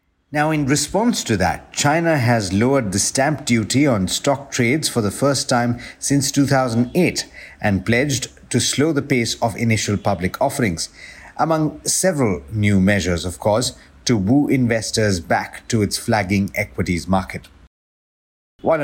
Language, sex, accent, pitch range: English, male, Indian, 100-135 Hz